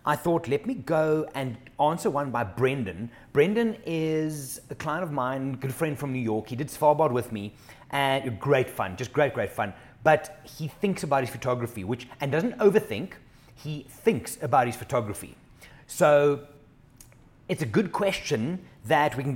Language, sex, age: English, male, 30-49